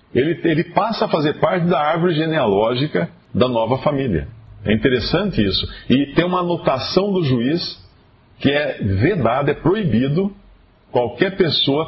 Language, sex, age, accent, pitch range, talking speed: Portuguese, male, 40-59, Brazilian, 105-155 Hz, 140 wpm